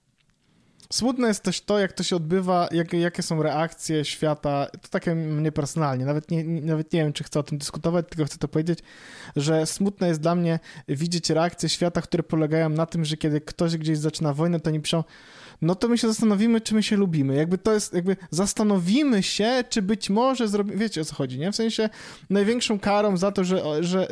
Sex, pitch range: male, 155-195 Hz